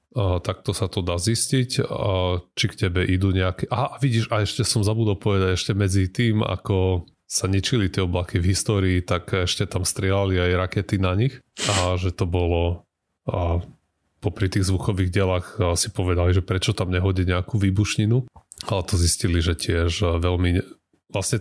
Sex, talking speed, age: male, 175 wpm, 30-49